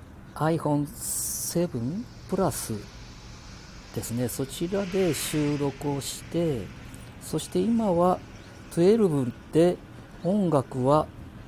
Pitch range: 115-155 Hz